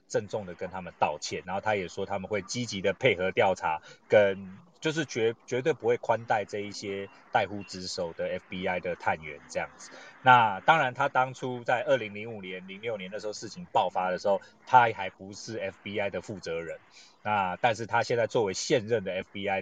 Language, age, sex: Chinese, 30-49, male